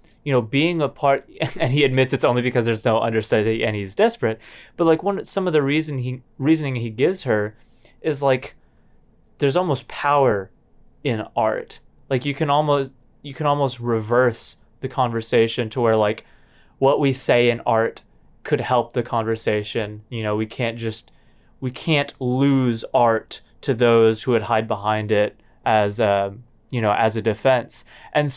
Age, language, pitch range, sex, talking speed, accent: 20-39, English, 110-135 Hz, male, 175 wpm, American